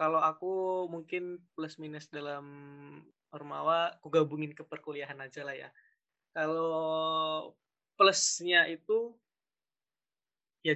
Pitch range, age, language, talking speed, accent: 145-180 Hz, 20-39, Indonesian, 100 wpm, native